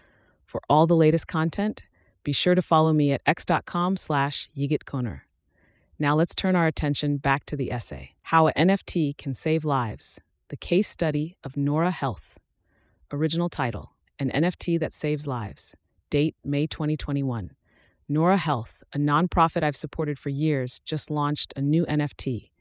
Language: English